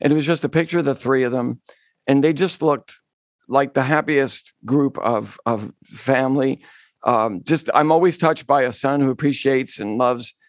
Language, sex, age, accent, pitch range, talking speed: English, male, 50-69, American, 135-170 Hz, 195 wpm